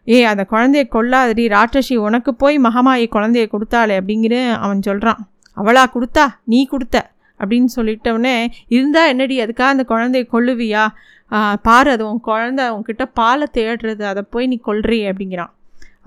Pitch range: 220-255 Hz